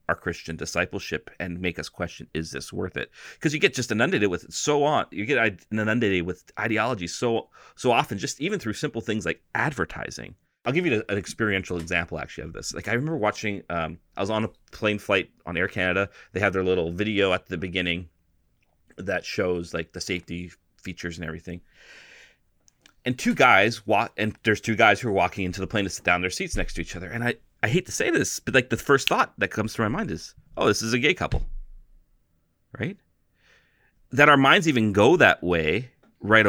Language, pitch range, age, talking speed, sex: English, 85-110 Hz, 30-49, 215 wpm, male